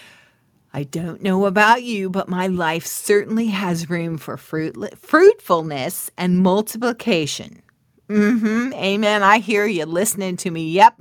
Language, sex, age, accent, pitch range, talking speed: English, female, 40-59, American, 170-225 Hz, 130 wpm